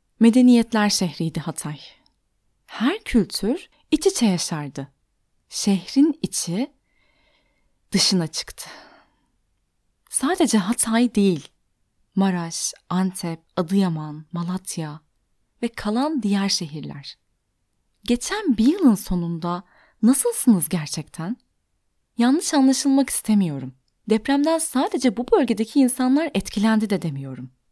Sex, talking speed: female, 85 wpm